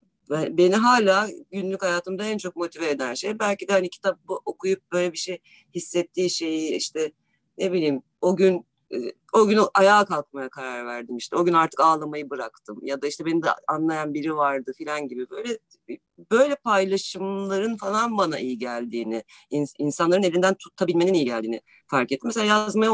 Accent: native